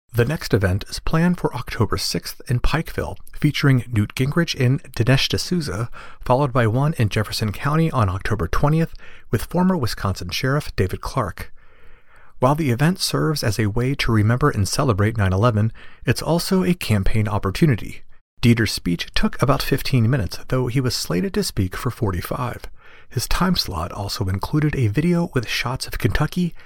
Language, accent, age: English, American, 40-59